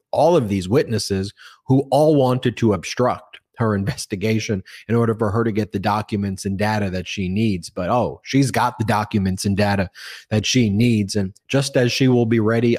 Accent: American